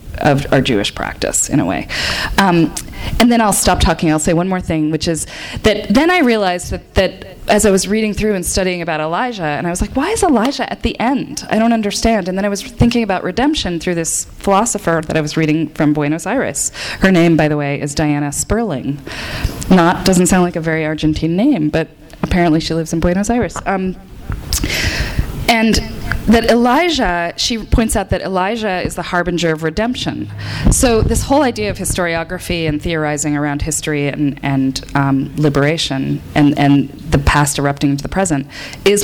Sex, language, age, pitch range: female, English, 20-39, 150-210 Hz